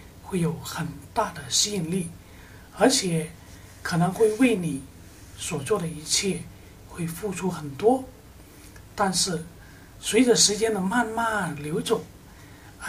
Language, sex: Chinese, male